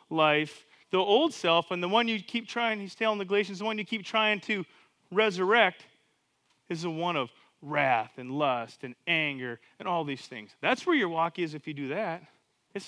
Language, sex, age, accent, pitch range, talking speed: English, male, 30-49, American, 155-195 Hz, 205 wpm